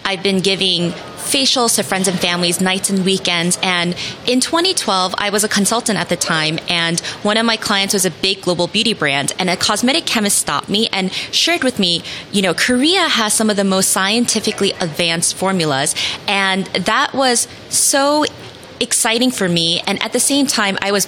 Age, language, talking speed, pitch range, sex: 20-39, English, 190 wpm, 175-220 Hz, female